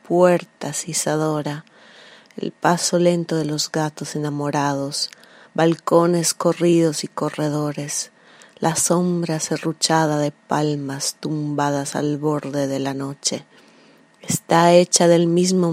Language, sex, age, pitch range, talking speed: Italian, female, 30-49, 145-165 Hz, 105 wpm